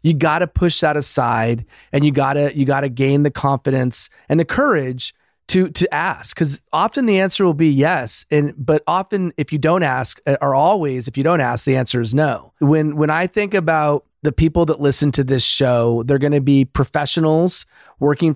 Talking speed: 195 wpm